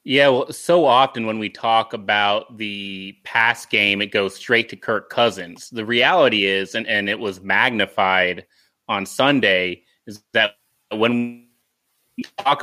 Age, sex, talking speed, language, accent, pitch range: 30-49, male, 150 wpm, English, American, 110-130 Hz